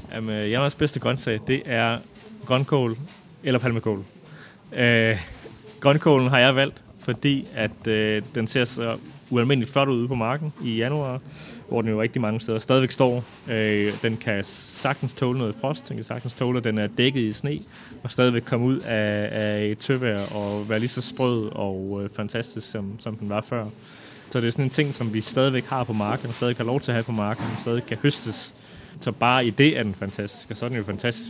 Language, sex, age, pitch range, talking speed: Danish, male, 20-39, 105-125 Hz, 215 wpm